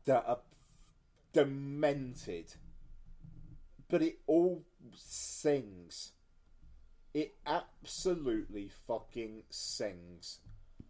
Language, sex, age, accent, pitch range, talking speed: English, male, 40-59, British, 115-170 Hz, 60 wpm